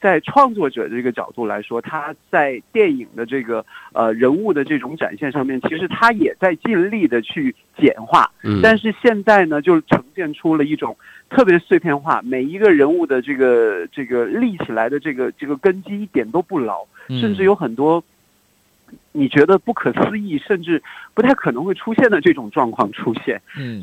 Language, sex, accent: Chinese, male, native